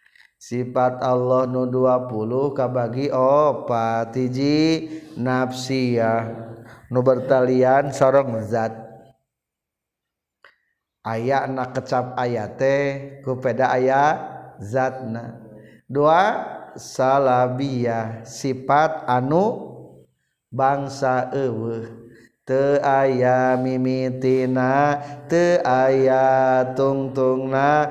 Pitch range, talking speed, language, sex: 125-135 Hz, 70 wpm, Indonesian, male